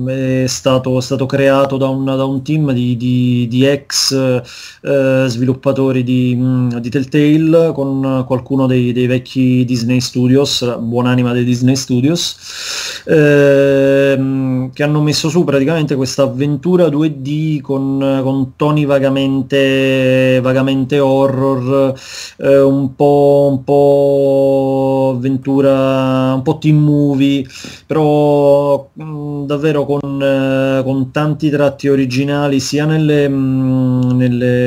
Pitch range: 130-140 Hz